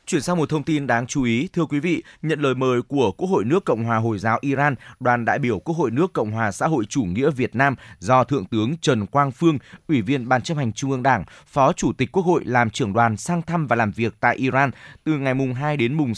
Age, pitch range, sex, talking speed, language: 20-39, 120-150 Hz, male, 265 wpm, Vietnamese